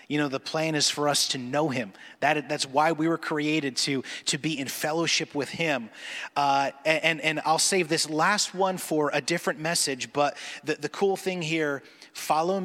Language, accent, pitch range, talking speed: English, American, 145-180 Hz, 200 wpm